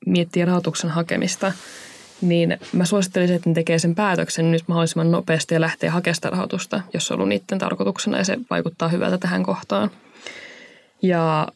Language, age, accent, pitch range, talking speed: Finnish, 20-39, native, 160-195 Hz, 155 wpm